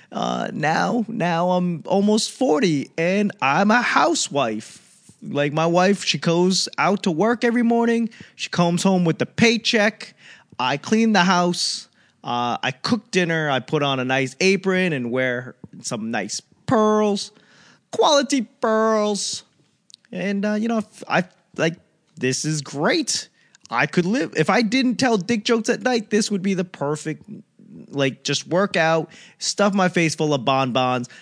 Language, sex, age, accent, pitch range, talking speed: English, male, 20-39, American, 140-210 Hz, 160 wpm